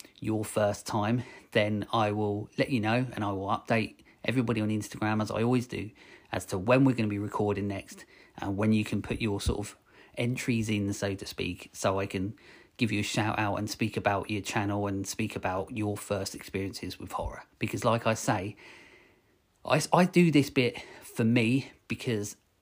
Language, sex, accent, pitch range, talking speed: English, male, British, 100-115 Hz, 200 wpm